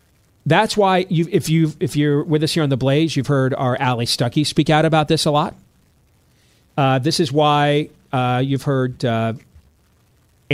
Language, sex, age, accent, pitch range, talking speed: English, male, 40-59, American, 125-160 Hz, 180 wpm